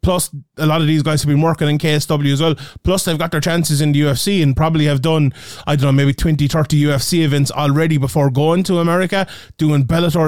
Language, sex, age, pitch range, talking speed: English, male, 20-39, 145-175 Hz, 235 wpm